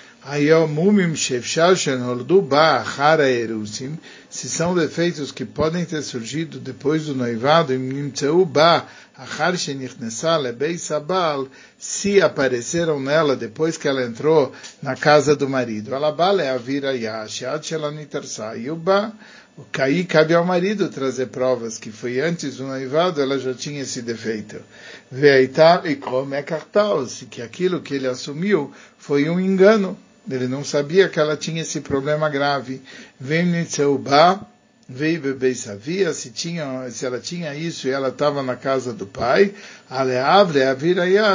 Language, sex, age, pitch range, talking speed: Turkish, male, 60-79, 130-170 Hz, 120 wpm